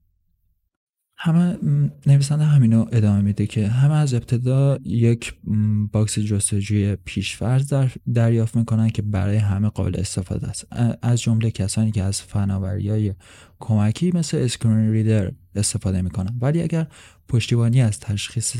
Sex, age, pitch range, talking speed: male, 20-39, 95-120 Hz, 125 wpm